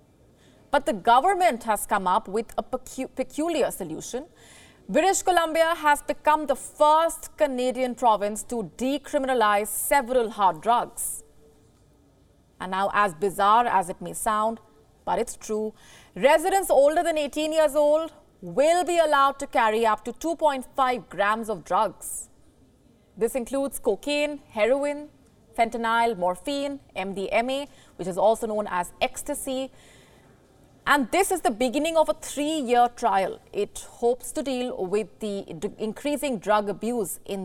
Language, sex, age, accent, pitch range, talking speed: English, female, 30-49, Indian, 210-295 Hz, 135 wpm